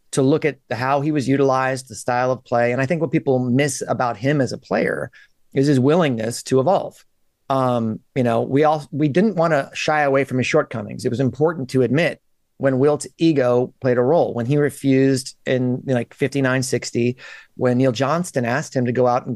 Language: English